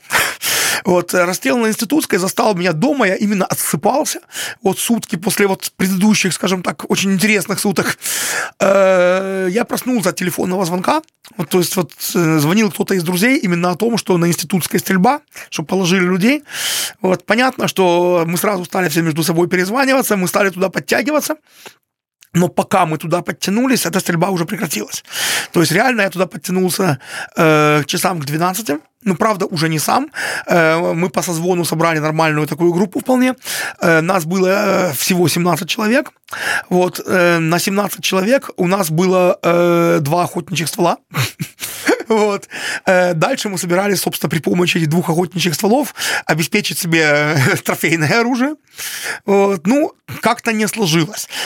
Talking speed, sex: 150 wpm, male